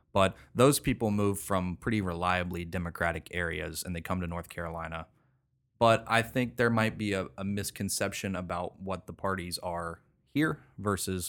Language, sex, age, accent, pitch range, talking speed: English, male, 30-49, American, 85-110 Hz, 165 wpm